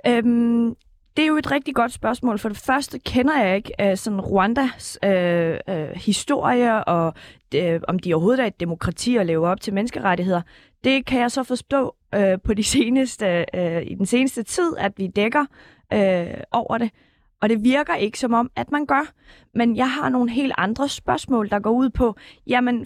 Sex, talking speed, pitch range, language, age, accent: female, 195 wpm, 195-255 Hz, Danish, 20-39, native